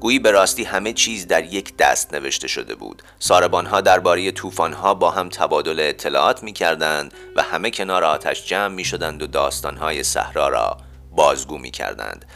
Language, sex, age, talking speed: Persian, male, 30-49, 160 wpm